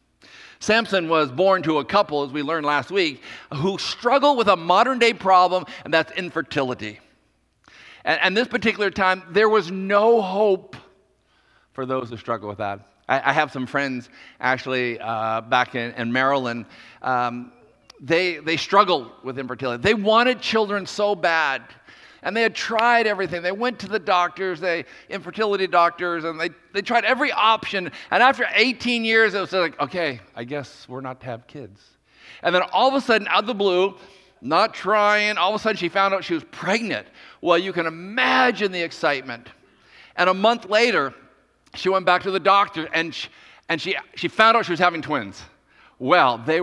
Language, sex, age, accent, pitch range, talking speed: English, male, 50-69, American, 135-205 Hz, 185 wpm